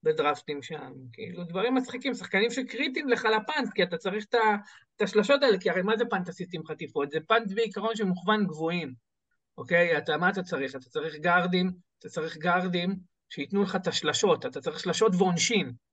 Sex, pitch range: male, 175-250 Hz